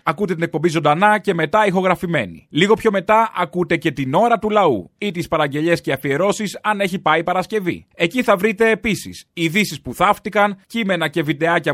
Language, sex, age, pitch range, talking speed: Greek, male, 30-49, 155-205 Hz, 185 wpm